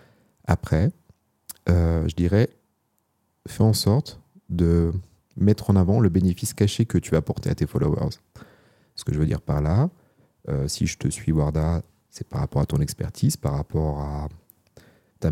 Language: French